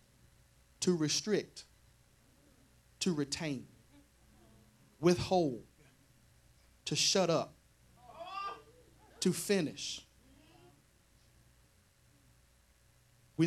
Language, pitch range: English, 115-145 Hz